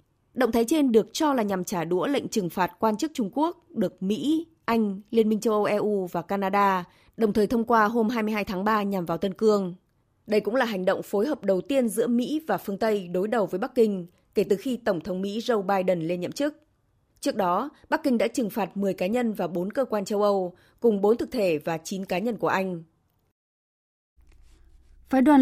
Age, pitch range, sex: 20-39, 190-235 Hz, female